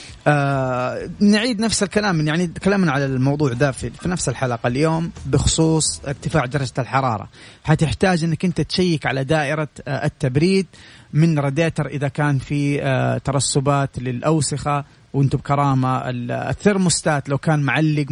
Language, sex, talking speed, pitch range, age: English, male, 115 wpm, 135-160 Hz, 30-49